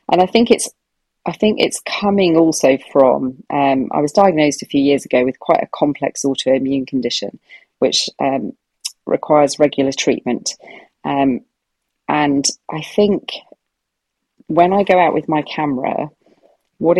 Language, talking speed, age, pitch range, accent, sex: English, 145 wpm, 30-49, 135-155 Hz, British, female